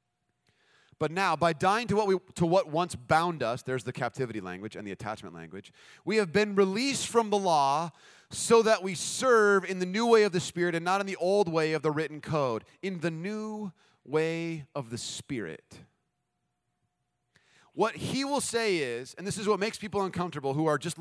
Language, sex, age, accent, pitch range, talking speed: English, male, 30-49, American, 135-195 Hz, 200 wpm